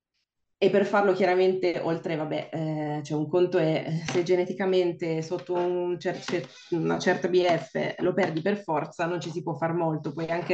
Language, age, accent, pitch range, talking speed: Italian, 20-39, native, 155-180 Hz, 180 wpm